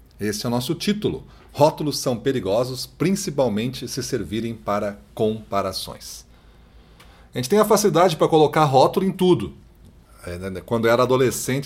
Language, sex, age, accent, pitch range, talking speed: Portuguese, male, 30-49, Brazilian, 110-155 Hz, 135 wpm